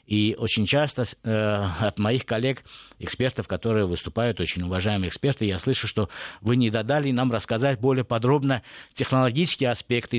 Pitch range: 105-130 Hz